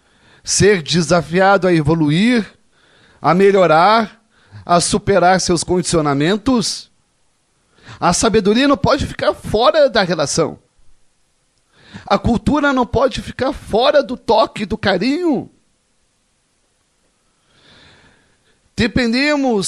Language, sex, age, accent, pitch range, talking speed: Portuguese, male, 40-59, Brazilian, 190-250 Hz, 90 wpm